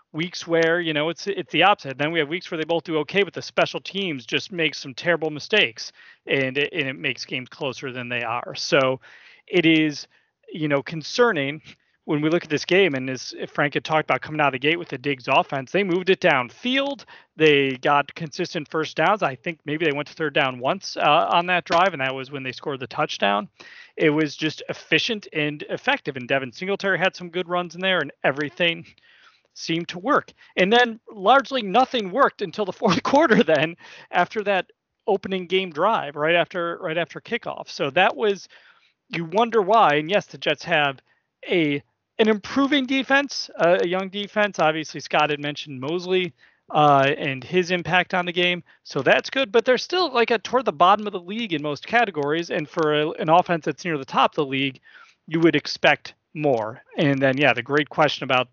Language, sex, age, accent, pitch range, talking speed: English, male, 40-59, American, 145-190 Hz, 210 wpm